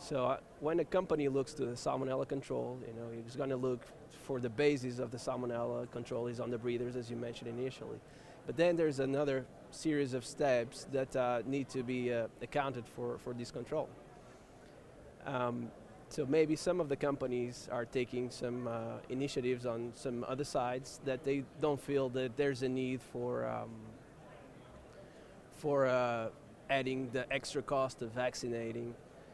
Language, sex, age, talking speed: English, male, 20-39, 170 wpm